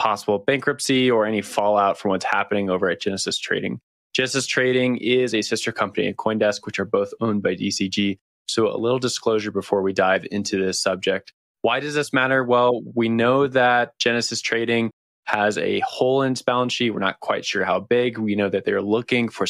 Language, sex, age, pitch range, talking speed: English, male, 20-39, 100-120 Hz, 200 wpm